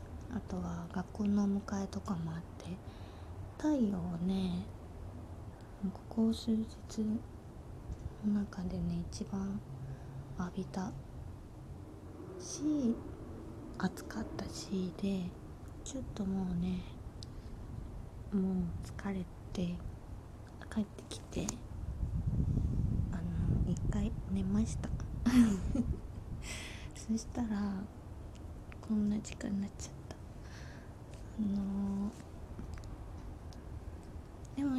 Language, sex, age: Japanese, female, 20-39